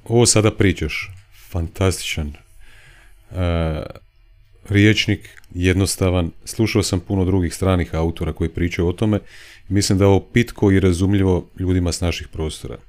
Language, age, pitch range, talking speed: Croatian, 40-59, 90-105 Hz, 125 wpm